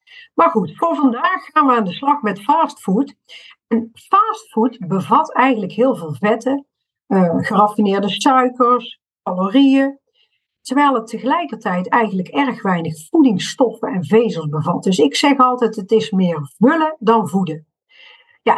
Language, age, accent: Dutch, 50-69, Dutch